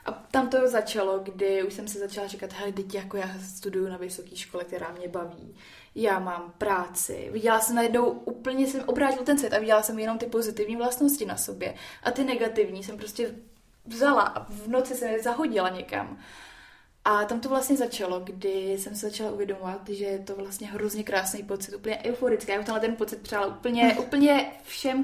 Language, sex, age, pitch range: Czech, female, 20-39, 195-225 Hz